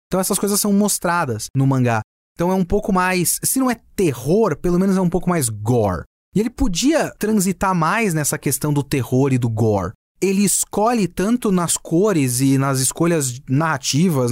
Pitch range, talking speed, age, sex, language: 150-210 Hz, 185 wpm, 30-49, male, Portuguese